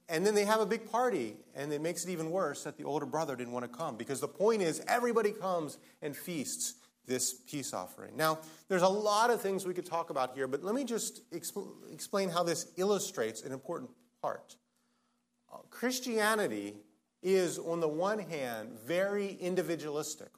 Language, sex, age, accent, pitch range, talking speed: English, male, 30-49, American, 155-205 Hz, 185 wpm